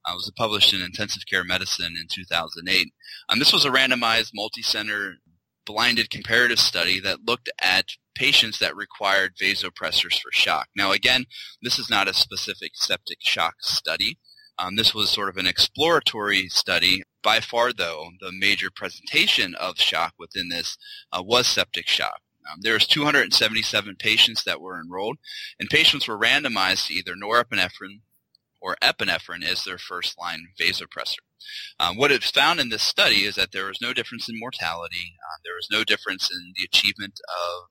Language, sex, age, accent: English, male, 20-39, American